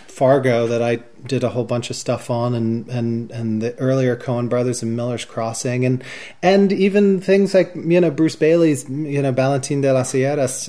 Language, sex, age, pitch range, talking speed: English, male, 30-49, 125-140 Hz, 195 wpm